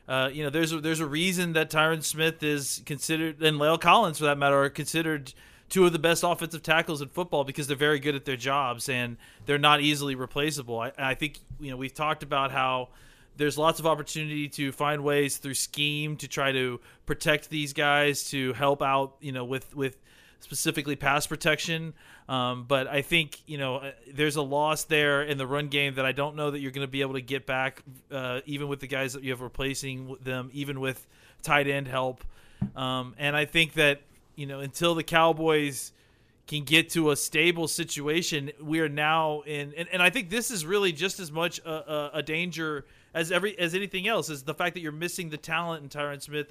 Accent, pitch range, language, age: American, 140-160 Hz, English, 30-49